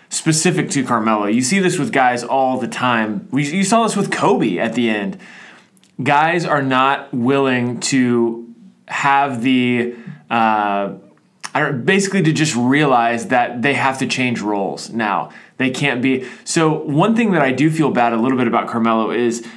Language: English